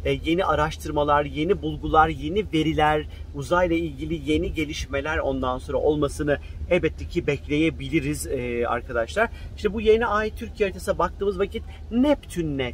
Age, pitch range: 40-59, 145-180 Hz